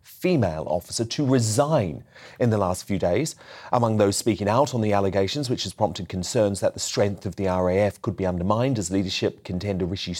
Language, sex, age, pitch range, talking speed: English, male, 40-59, 105-135 Hz, 195 wpm